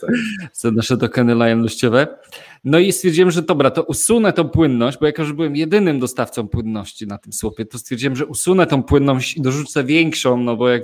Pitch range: 120-170 Hz